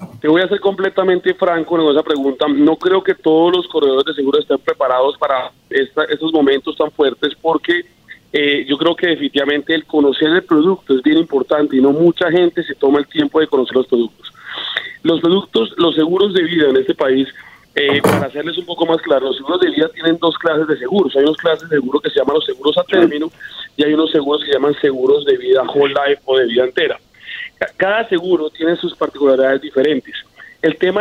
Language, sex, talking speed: Spanish, male, 215 wpm